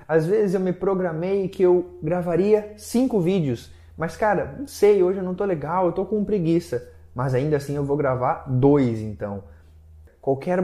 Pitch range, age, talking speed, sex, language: 155-210 Hz, 20-39, 175 wpm, male, Portuguese